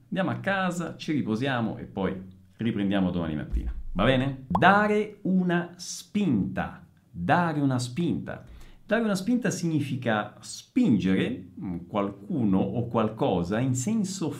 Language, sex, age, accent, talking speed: Italian, male, 50-69, native, 115 wpm